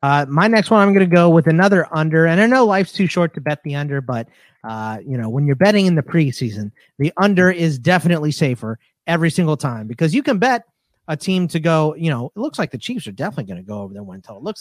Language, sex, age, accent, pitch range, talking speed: English, male, 30-49, American, 135-180 Hz, 260 wpm